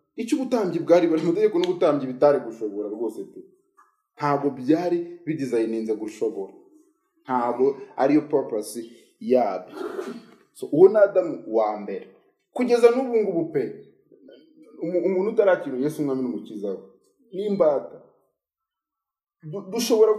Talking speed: 105 wpm